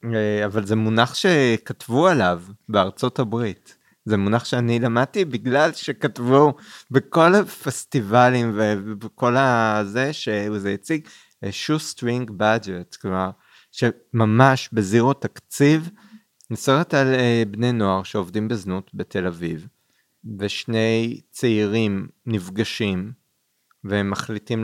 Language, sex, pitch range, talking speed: Hebrew, male, 100-125 Hz, 95 wpm